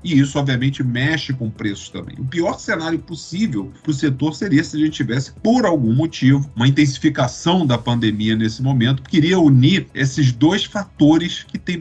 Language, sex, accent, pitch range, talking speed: Portuguese, male, Brazilian, 105-145 Hz, 185 wpm